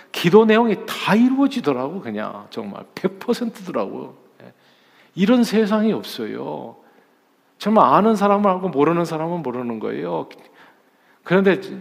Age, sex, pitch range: 40-59, male, 125-185 Hz